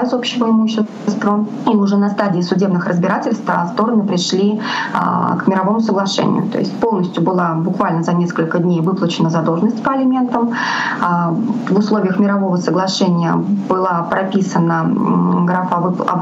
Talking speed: 125 wpm